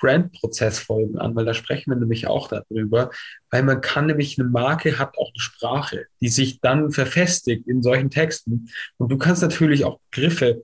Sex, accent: male, German